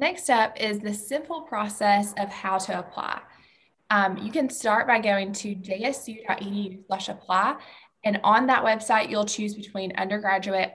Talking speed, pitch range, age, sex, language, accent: 145 wpm, 190-220 Hz, 20-39, female, English, American